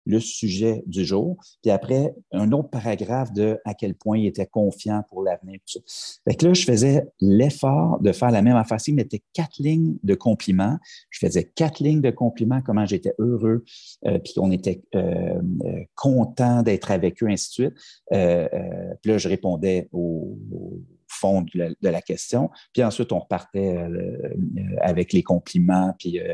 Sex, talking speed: male, 180 wpm